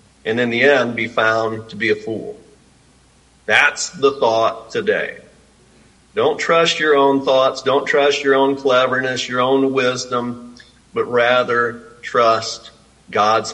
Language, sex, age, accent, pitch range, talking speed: English, male, 50-69, American, 120-165 Hz, 135 wpm